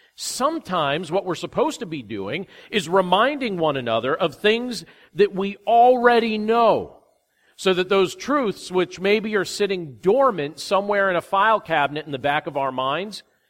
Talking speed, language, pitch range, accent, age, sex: 165 wpm, English, 160-220 Hz, American, 40-59, male